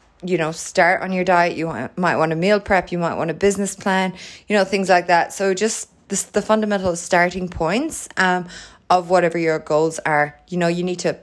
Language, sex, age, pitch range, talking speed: English, female, 20-39, 165-200 Hz, 225 wpm